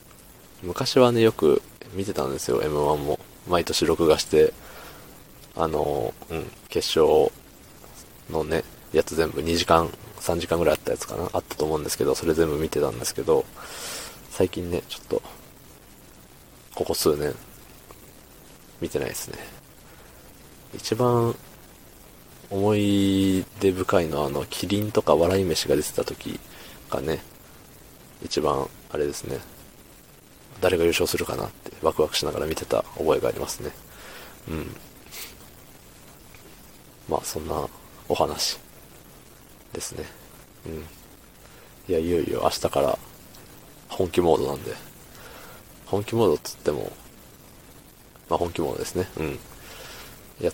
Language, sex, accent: Japanese, male, native